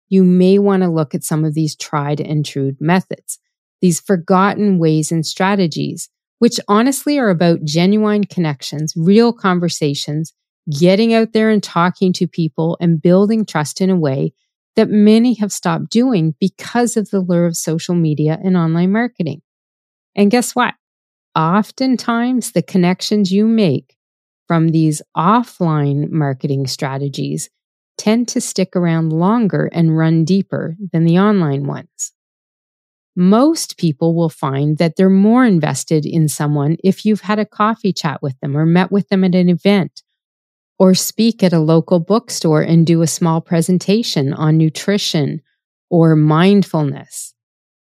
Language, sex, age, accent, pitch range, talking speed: English, female, 40-59, American, 155-200 Hz, 150 wpm